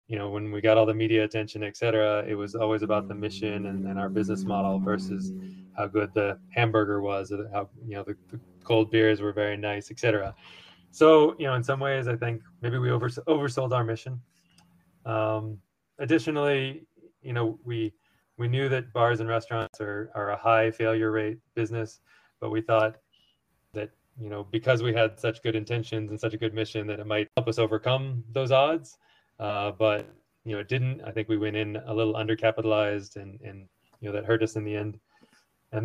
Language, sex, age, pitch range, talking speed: English, male, 20-39, 105-120 Hz, 205 wpm